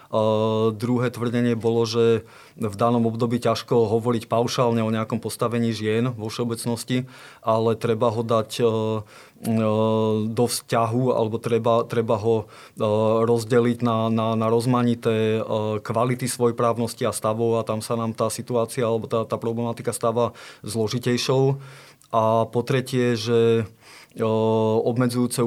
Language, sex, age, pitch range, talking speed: Slovak, male, 20-39, 110-120 Hz, 125 wpm